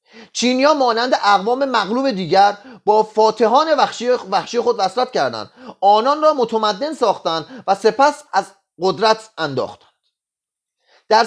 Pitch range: 170-240 Hz